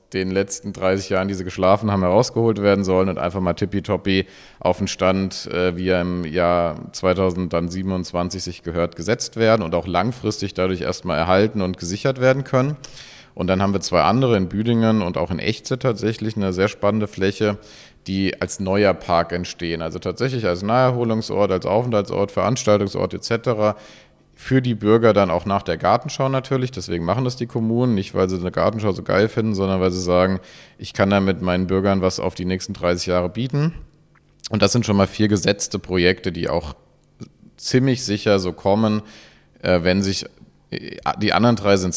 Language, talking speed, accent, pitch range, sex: German, 180 wpm, German, 90-110 Hz, male